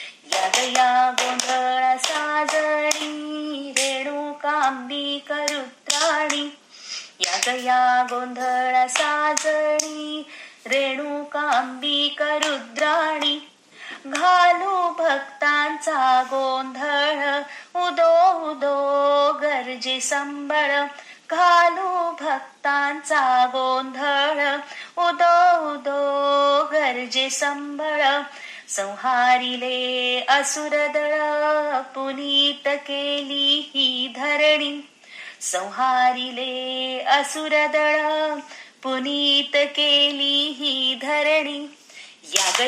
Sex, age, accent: female, 20-39, native